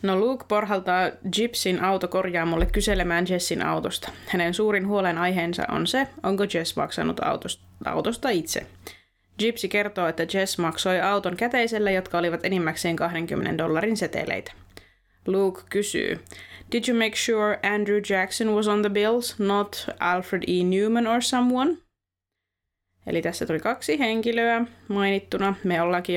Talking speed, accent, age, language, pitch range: 135 wpm, native, 20-39, Finnish, 170-215 Hz